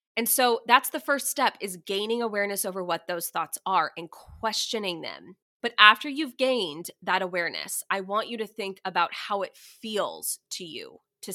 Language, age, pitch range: English, 20-39, 190-255 Hz